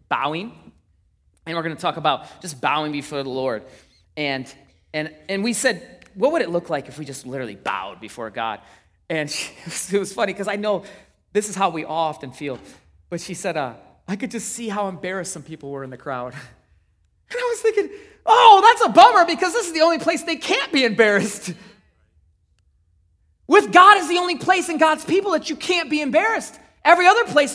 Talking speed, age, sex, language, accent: 205 wpm, 30-49, male, English, American